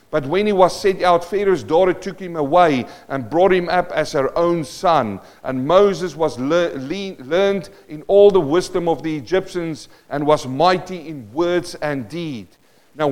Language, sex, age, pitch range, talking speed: English, male, 50-69, 150-190 Hz, 175 wpm